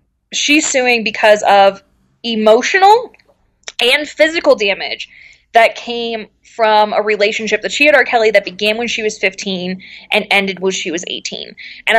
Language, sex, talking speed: English, female, 155 wpm